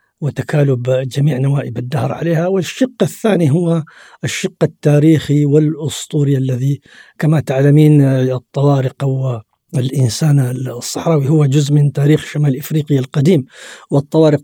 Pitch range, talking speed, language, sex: 130-150 Hz, 110 wpm, Arabic, male